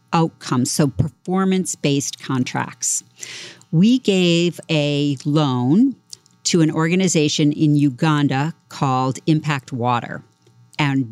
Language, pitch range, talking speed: English, 145-180 Hz, 90 wpm